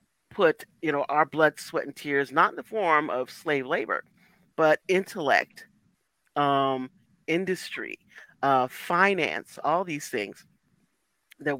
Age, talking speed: 40-59, 130 wpm